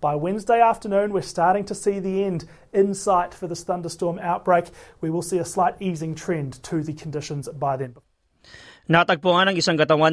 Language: Filipino